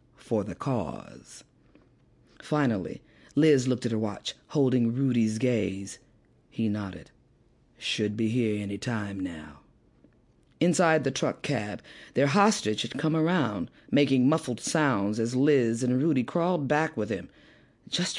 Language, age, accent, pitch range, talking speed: English, 40-59, American, 115-155 Hz, 135 wpm